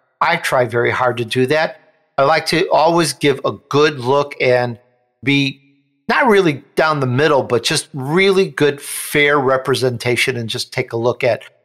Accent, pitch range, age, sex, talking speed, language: American, 130-165 Hz, 50-69, male, 175 wpm, English